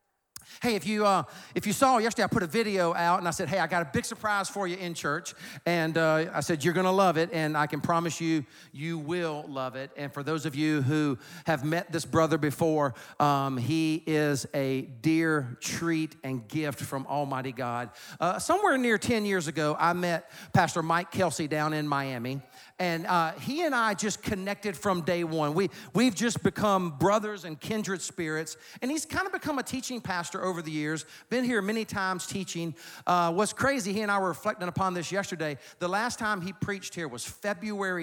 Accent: American